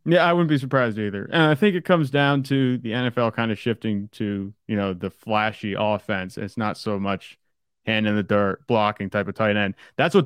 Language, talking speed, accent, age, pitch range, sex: English, 230 wpm, American, 30-49, 105-130 Hz, male